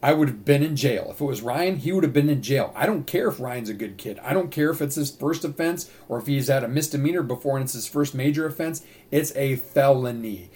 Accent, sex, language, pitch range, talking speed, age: American, male, English, 120-150 Hz, 275 wpm, 40-59